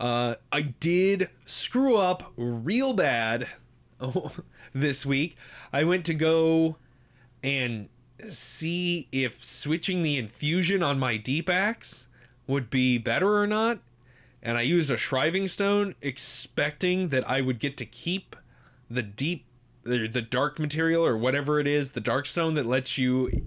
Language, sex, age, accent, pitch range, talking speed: English, male, 20-39, American, 125-170 Hz, 150 wpm